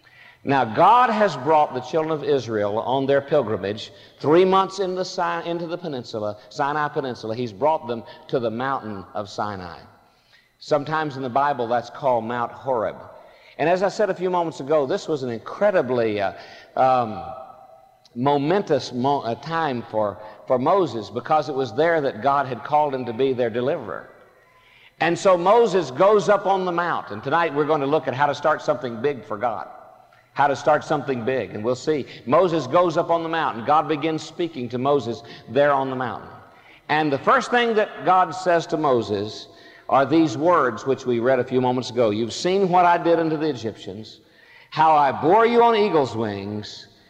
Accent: American